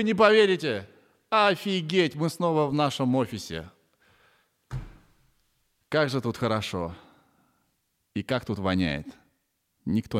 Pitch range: 95-130 Hz